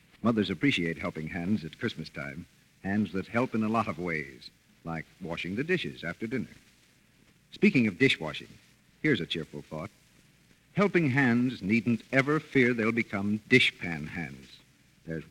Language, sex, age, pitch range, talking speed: English, male, 60-79, 100-150 Hz, 150 wpm